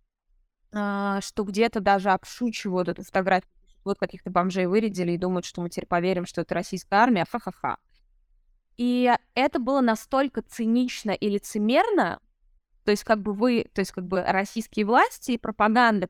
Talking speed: 155 wpm